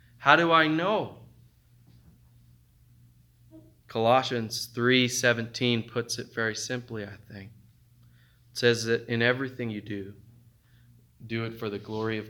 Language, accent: English, American